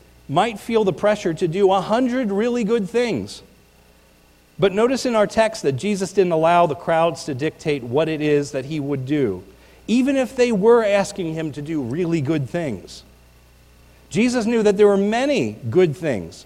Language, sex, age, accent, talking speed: English, male, 40-59, American, 180 wpm